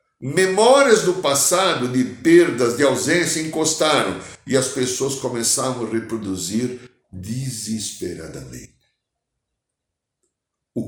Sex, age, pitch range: male, 60-79, 110-165 Hz